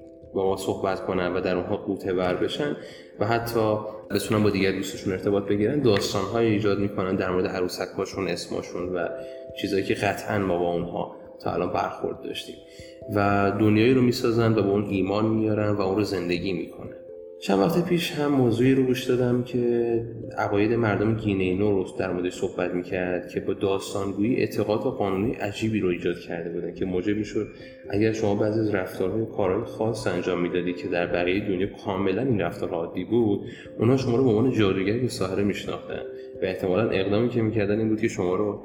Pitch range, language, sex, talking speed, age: 95-120 Hz, Persian, male, 185 wpm, 20-39